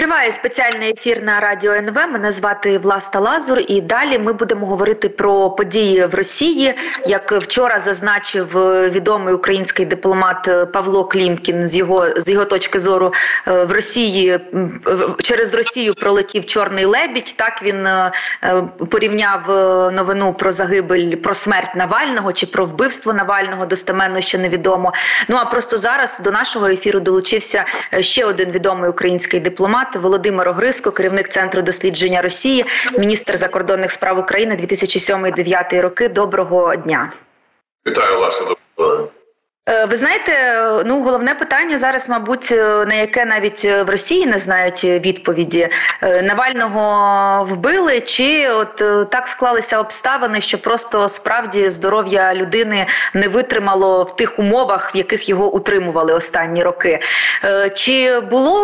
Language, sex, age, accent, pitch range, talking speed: Ukrainian, female, 30-49, native, 185-235 Hz, 130 wpm